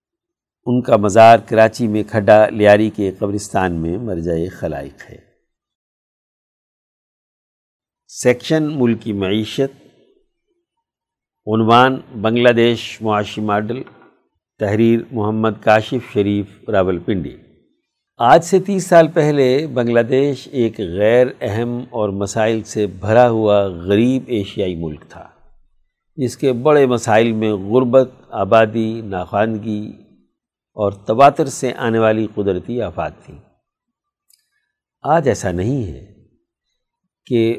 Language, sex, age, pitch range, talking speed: Urdu, male, 60-79, 105-135 Hz, 110 wpm